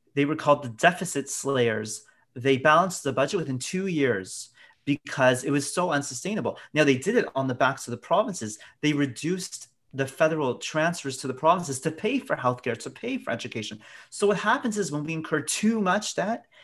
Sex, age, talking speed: male, 30-49, 195 wpm